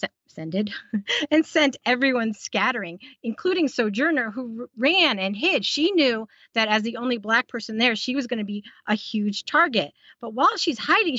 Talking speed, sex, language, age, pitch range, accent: 170 wpm, female, English, 40-59, 205-275 Hz, American